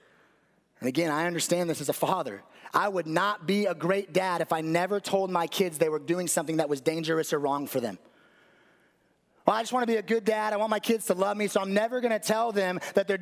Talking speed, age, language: 260 wpm, 30-49, English